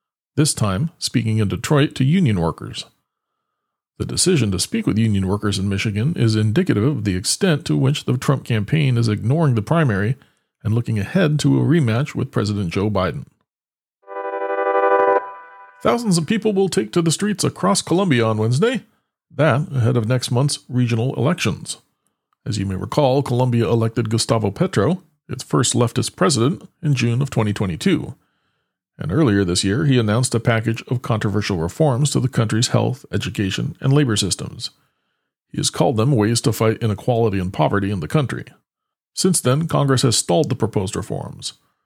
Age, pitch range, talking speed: 40-59, 105-145 Hz, 165 wpm